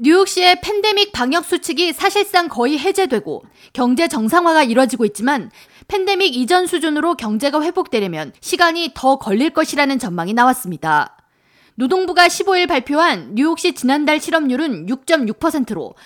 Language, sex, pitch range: Korean, female, 240-330 Hz